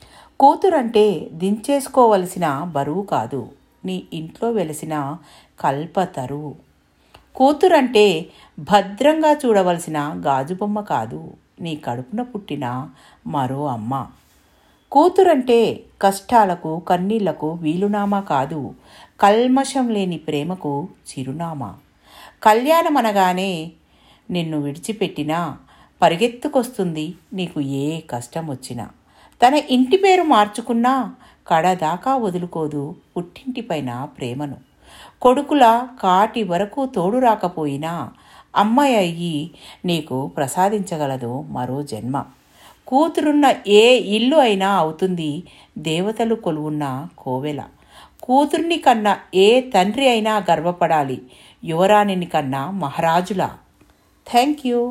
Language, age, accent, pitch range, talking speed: Telugu, 50-69, native, 150-240 Hz, 80 wpm